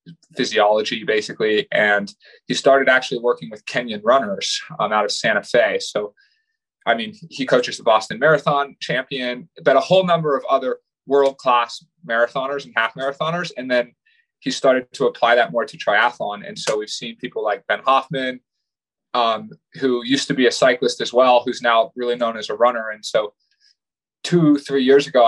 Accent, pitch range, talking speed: American, 125-195 Hz, 180 wpm